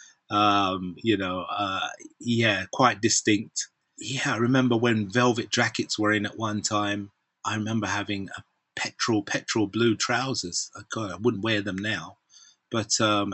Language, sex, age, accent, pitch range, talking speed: English, male, 30-49, British, 105-150 Hz, 150 wpm